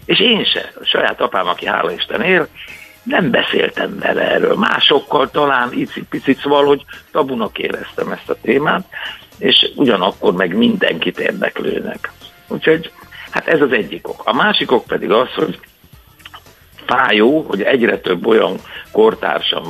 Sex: male